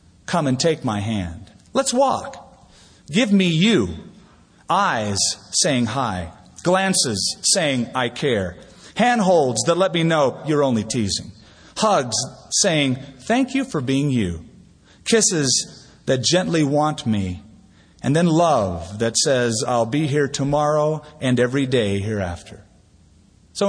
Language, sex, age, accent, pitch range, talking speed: English, male, 40-59, American, 115-185 Hz, 130 wpm